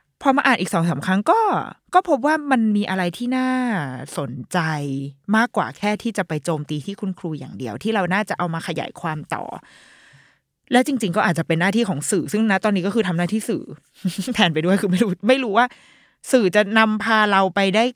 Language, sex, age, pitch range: Thai, female, 20-39, 160-220 Hz